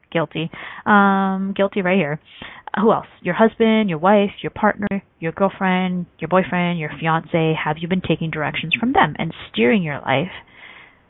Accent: American